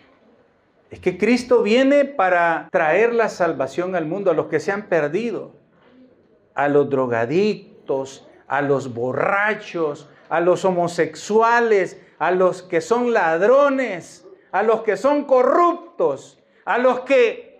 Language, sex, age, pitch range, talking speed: Spanish, male, 50-69, 175-255 Hz, 130 wpm